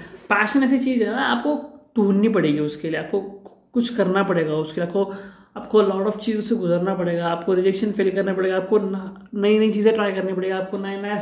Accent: native